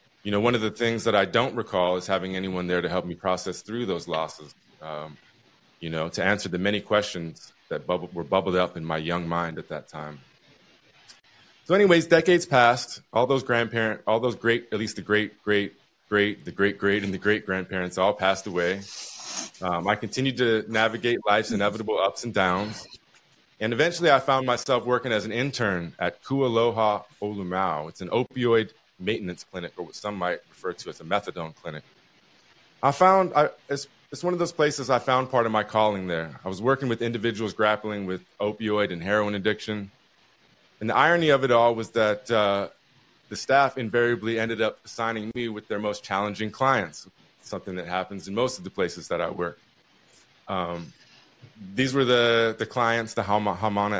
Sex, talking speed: male, 190 wpm